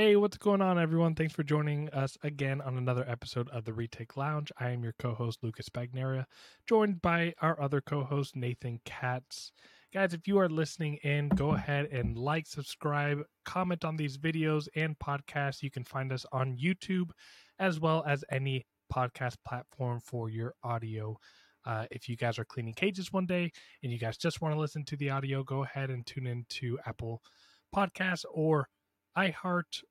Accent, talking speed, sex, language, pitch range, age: American, 185 wpm, male, English, 125-160 Hz, 20-39